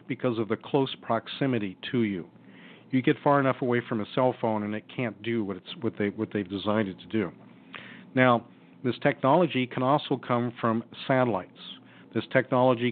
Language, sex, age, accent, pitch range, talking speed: English, male, 50-69, American, 110-140 Hz, 185 wpm